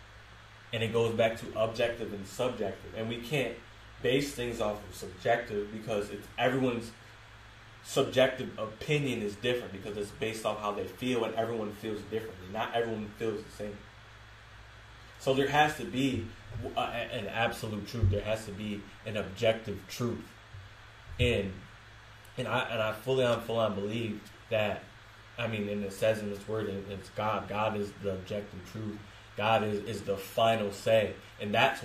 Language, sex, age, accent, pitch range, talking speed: English, male, 20-39, American, 105-115 Hz, 170 wpm